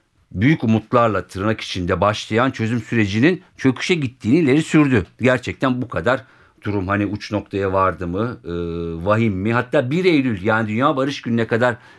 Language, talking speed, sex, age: Turkish, 155 wpm, male, 50-69